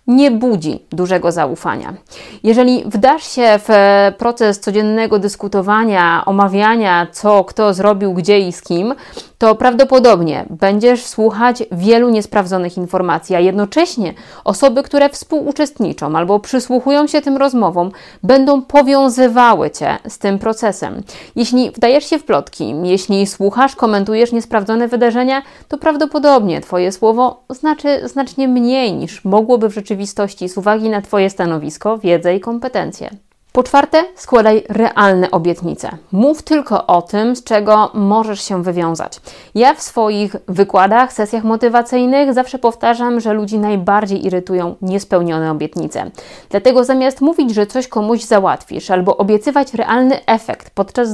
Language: Polish